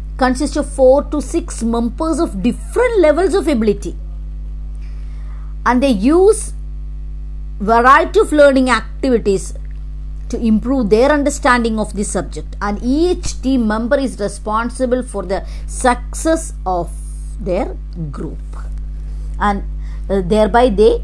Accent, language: Indian, English